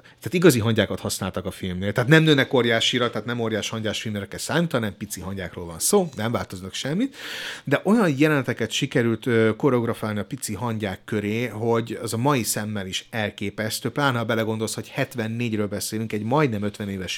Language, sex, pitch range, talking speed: Hungarian, male, 110-140 Hz, 180 wpm